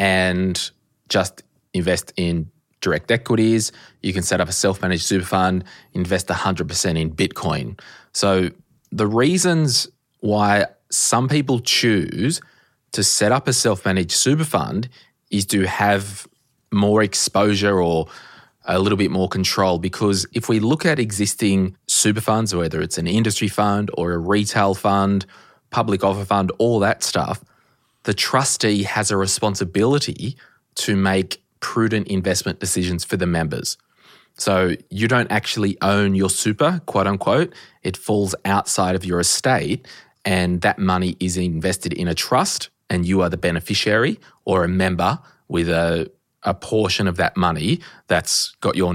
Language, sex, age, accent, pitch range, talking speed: English, male, 20-39, Australian, 90-110 Hz, 145 wpm